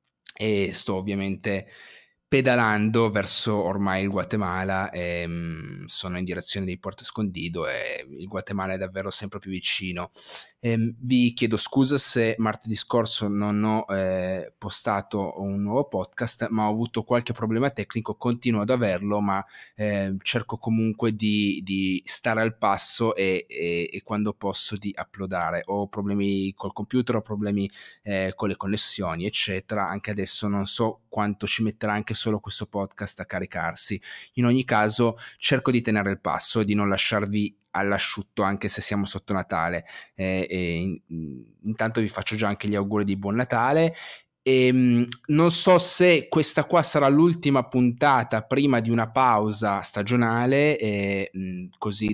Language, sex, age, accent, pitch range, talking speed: Italian, male, 30-49, native, 100-115 Hz, 150 wpm